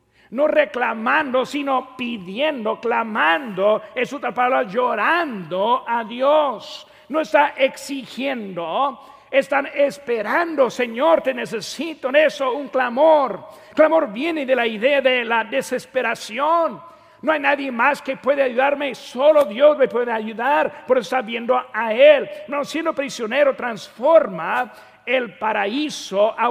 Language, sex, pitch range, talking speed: Spanish, male, 205-285 Hz, 125 wpm